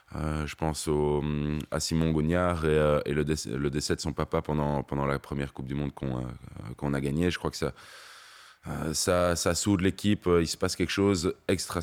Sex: male